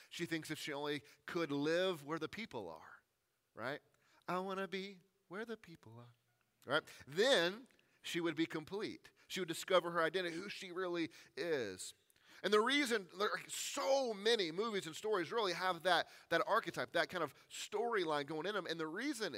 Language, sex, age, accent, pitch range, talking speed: English, male, 30-49, American, 155-195 Hz, 185 wpm